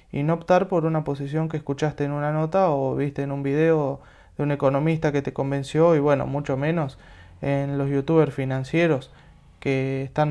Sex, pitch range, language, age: male, 135-160 Hz, Spanish, 20-39